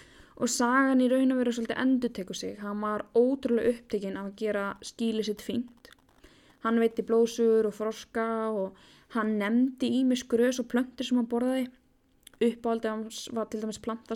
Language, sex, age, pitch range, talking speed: English, female, 10-29, 210-250 Hz, 160 wpm